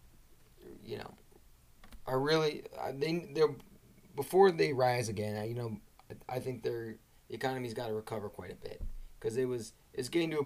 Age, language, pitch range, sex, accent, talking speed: 20-39, English, 105-130 Hz, male, American, 170 wpm